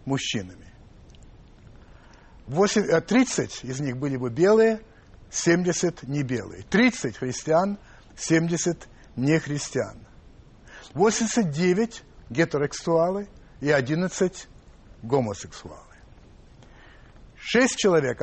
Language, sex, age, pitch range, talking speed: Russian, male, 60-79, 115-185 Hz, 70 wpm